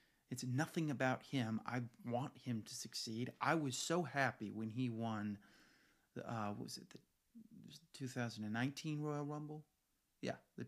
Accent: American